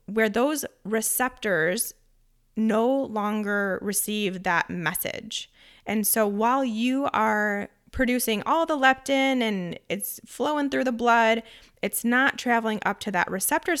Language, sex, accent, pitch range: English, female, American, 200-240 Hz